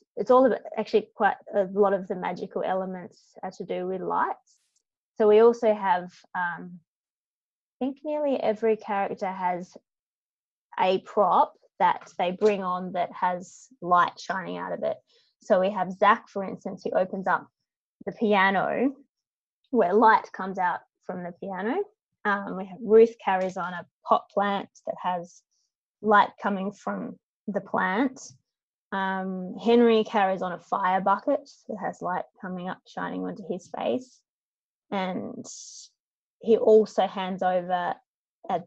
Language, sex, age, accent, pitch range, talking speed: English, female, 20-39, Australian, 185-225 Hz, 150 wpm